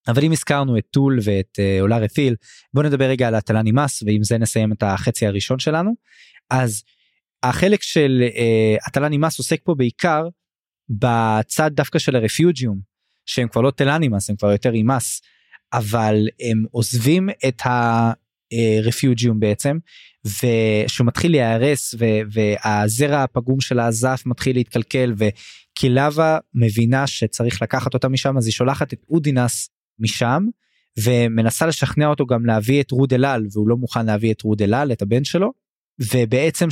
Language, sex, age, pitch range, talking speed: Hebrew, male, 20-39, 115-145 Hz, 150 wpm